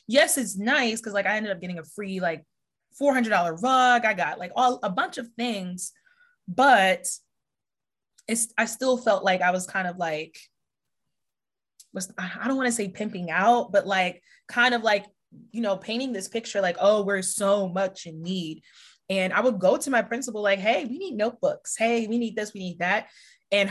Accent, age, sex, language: American, 20-39, female, English